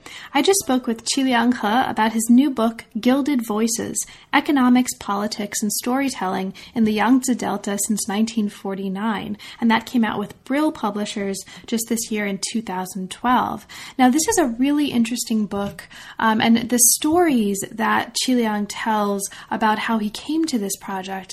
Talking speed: 160 wpm